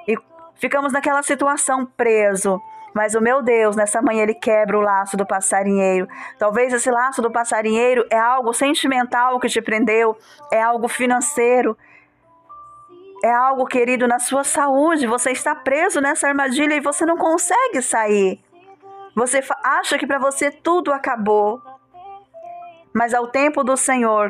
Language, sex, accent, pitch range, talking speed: Portuguese, female, Brazilian, 225-290 Hz, 145 wpm